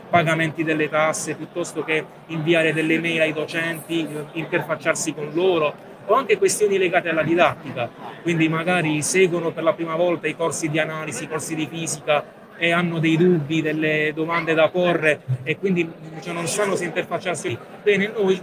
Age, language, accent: 30-49, Italian, native